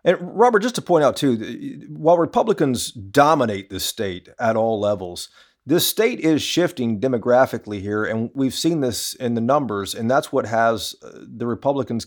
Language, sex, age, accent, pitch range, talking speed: English, male, 50-69, American, 115-150 Hz, 170 wpm